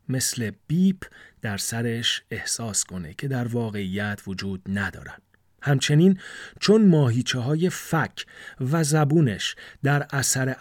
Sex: male